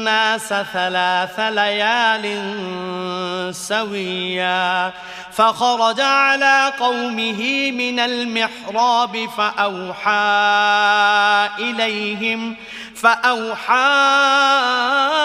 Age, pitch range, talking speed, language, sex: 30-49, 205-245 Hz, 45 wpm, English, male